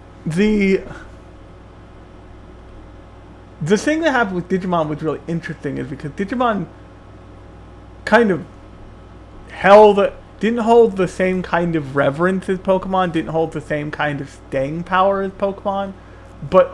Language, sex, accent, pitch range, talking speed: English, male, American, 105-170 Hz, 135 wpm